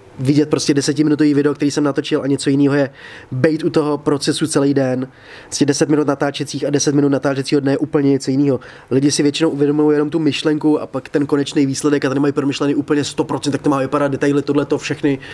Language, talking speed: Czech, 215 wpm